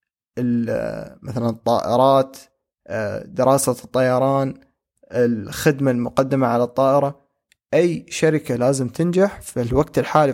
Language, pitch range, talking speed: Arabic, 125-150 Hz, 85 wpm